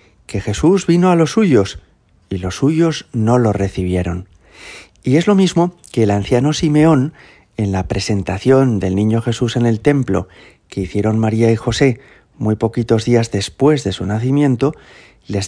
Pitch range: 100-135 Hz